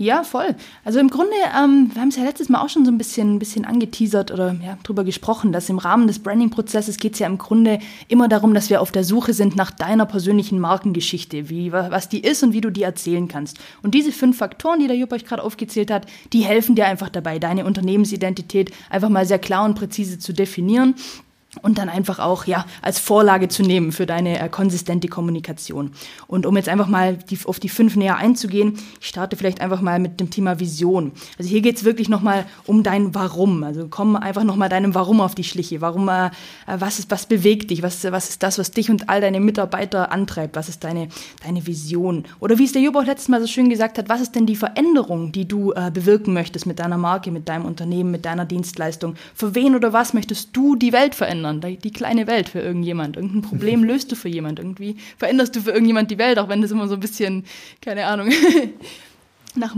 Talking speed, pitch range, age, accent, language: 225 wpm, 180-225 Hz, 20-39, German, German